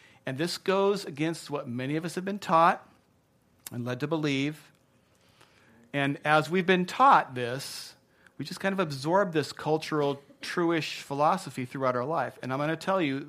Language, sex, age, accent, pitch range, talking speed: English, male, 40-59, American, 125-160 Hz, 175 wpm